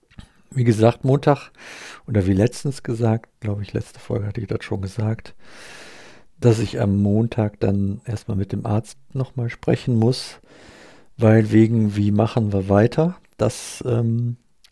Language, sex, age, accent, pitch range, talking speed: German, male, 50-69, German, 100-120 Hz, 145 wpm